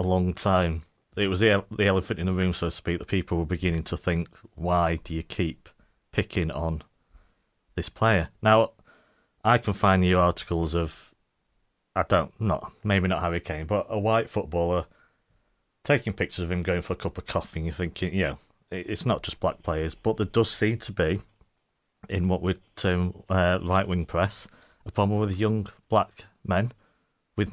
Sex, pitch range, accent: male, 90-105 Hz, British